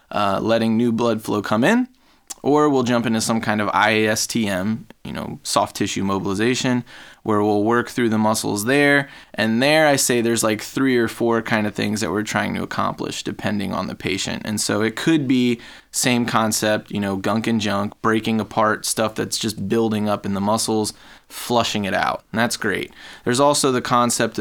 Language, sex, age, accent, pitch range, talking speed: English, male, 20-39, American, 105-125 Hz, 195 wpm